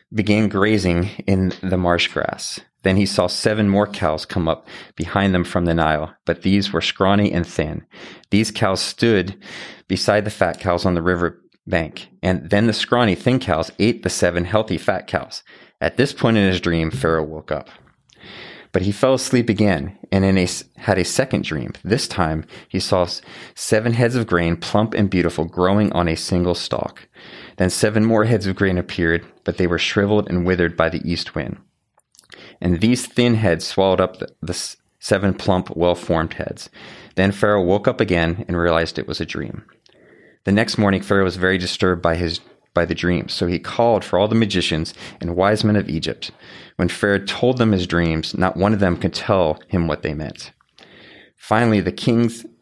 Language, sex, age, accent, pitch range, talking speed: English, male, 30-49, American, 85-105 Hz, 190 wpm